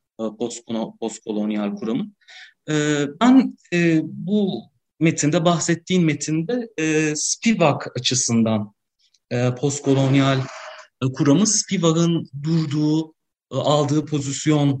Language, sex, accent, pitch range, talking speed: Turkish, male, native, 115-155 Hz, 60 wpm